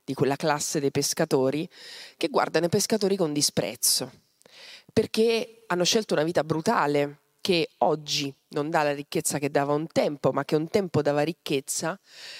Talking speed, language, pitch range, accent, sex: 160 wpm, Italian, 145-200 Hz, native, female